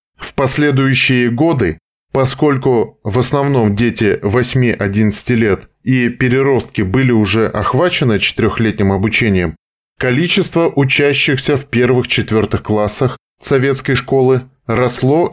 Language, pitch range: Russian, 110-145 Hz